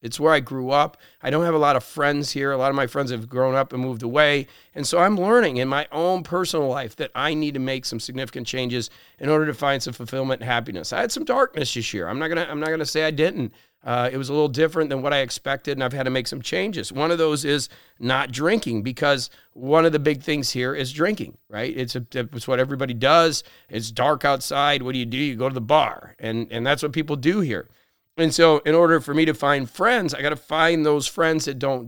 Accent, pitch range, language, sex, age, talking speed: American, 125-155 Hz, English, male, 40-59, 260 wpm